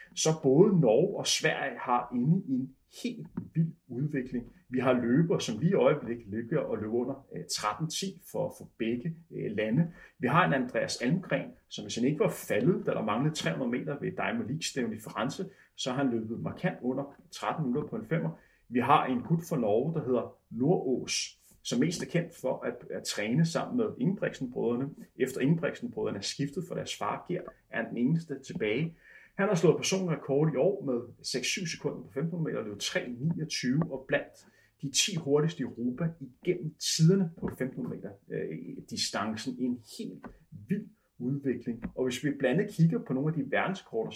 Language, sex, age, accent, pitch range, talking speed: Danish, male, 30-49, native, 125-175 Hz, 180 wpm